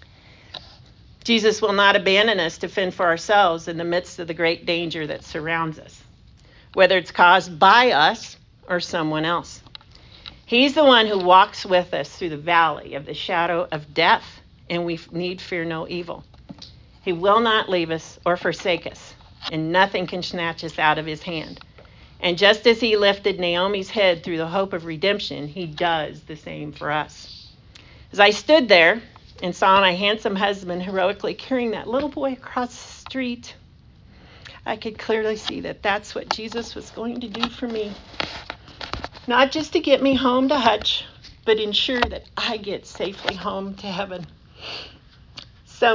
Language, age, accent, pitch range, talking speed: English, 50-69, American, 170-220 Hz, 170 wpm